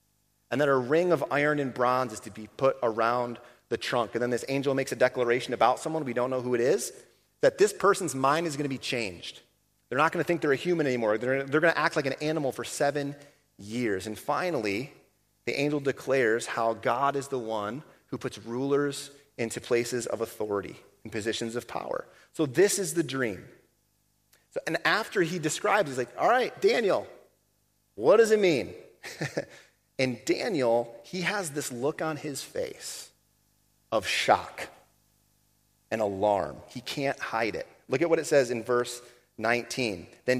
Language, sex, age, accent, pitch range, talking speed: English, male, 30-49, American, 120-155 Hz, 185 wpm